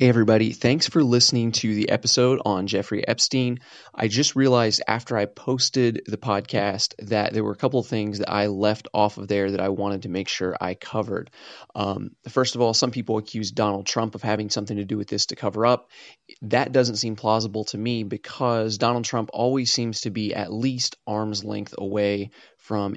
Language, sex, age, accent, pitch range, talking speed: English, male, 30-49, American, 105-120 Hz, 205 wpm